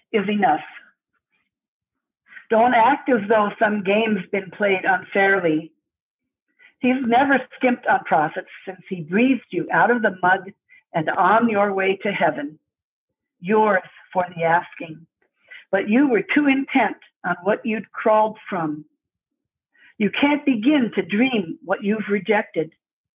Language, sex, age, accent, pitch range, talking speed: English, female, 60-79, American, 170-230 Hz, 135 wpm